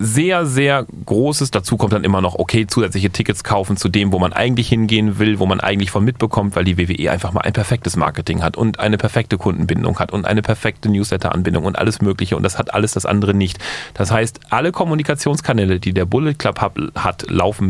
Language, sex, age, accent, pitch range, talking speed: German, male, 30-49, German, 95-120 Hz, 210 wpm